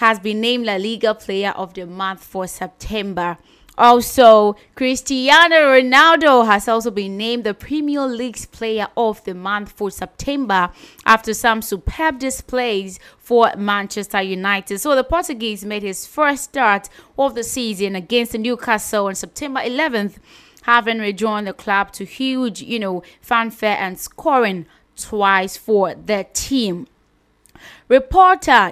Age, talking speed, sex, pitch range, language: 20-39, 135 wpm, female, 195-245 Hz, English